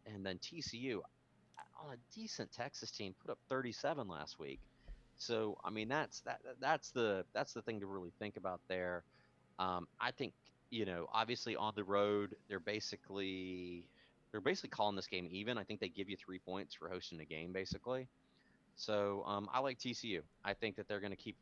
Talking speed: 195 wpm